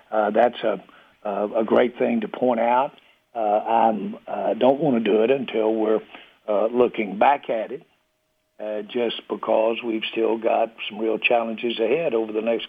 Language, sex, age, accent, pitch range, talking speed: English, male, 60-79, American, 110-120 Hz, 175 wpm